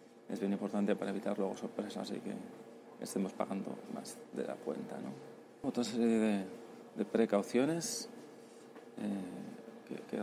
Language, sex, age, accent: Spanish, male, 30-49, Spanish